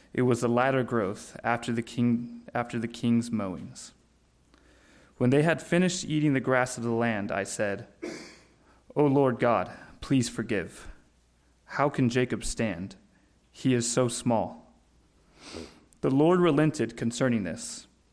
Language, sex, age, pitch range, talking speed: English, male, 20-39, 110-130 Hz, 130 wpm